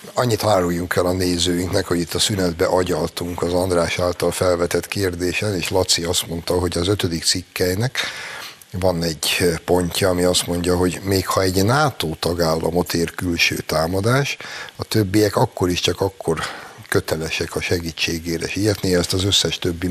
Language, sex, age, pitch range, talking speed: Hungarian, male, 60-79, 85-105 Hz, 155 wpm